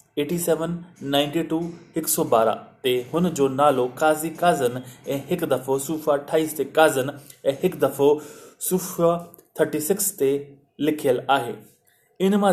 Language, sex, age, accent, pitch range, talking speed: Hindi, male, 20-39, native, 140-165 Hz, 120 wpm